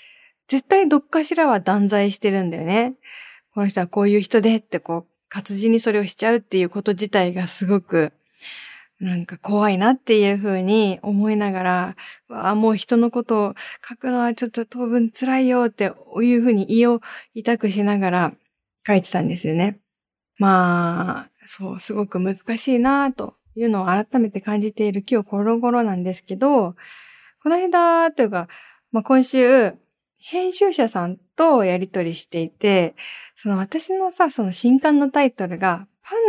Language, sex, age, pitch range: Japanese, female, 20-39, 185-240 Hz